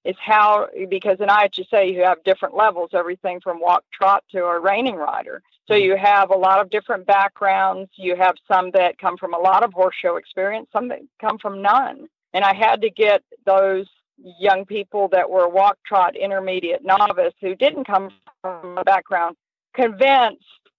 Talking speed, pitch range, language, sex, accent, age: 185 wpm, 180-215 Hz, English, female, American, 50-69